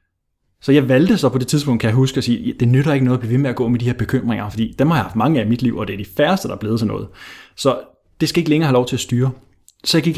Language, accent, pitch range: Danish, native, 110-145 Hz